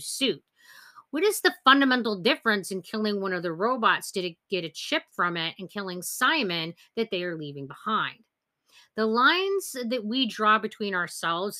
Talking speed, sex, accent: 170 wpm, female, American